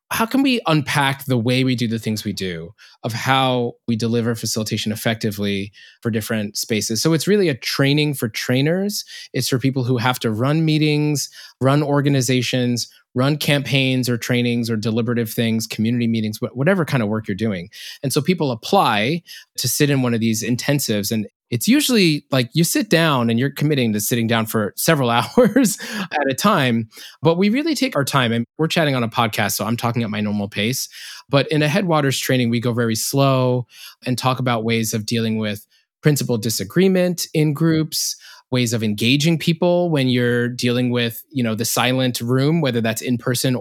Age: 20-39